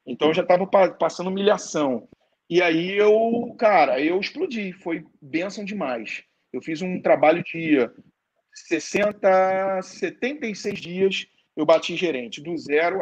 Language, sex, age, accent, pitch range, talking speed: Portuguese, male, 40-59, Brazilian, 155-190 Hz, 130 wpm